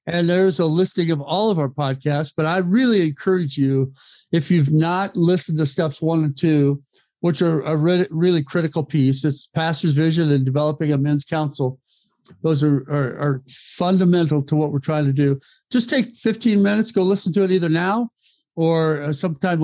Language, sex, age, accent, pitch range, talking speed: English, male, 50-69, American, 145-180 Hz, 185 wpm